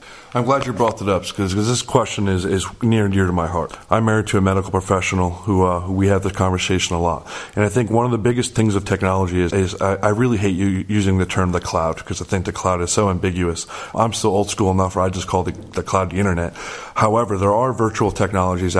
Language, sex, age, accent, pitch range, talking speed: English, male, 30-49, American, 95-105 Hz, 260 wpm